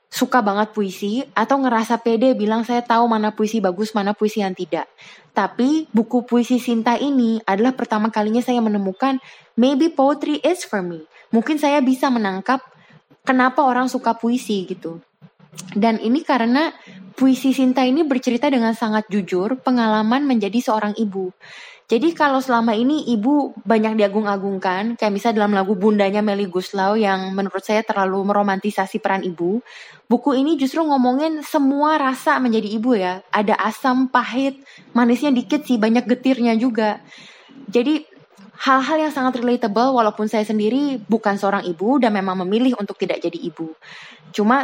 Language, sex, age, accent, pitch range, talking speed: Indonesian, female, 20-39, native, 205-260 Hz, 150 wpm